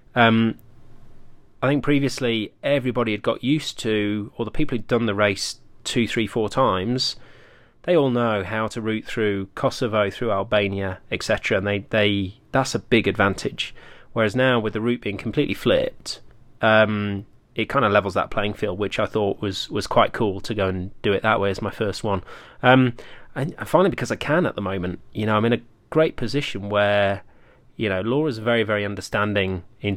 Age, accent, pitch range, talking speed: 30-49, British, 100-120 Hz, 195 wpm